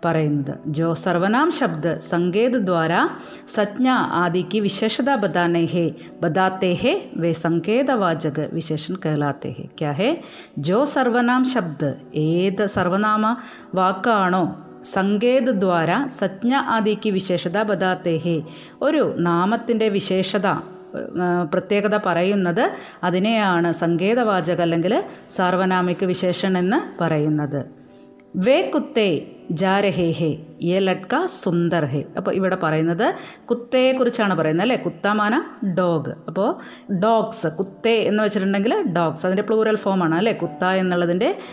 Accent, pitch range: native, 170-220 Hz